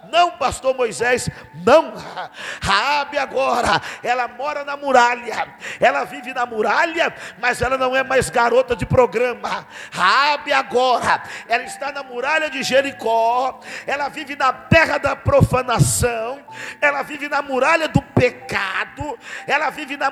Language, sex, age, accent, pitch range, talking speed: Portuguese, male, 50-69, Brazilian, 245-290 Hz, 135 wpm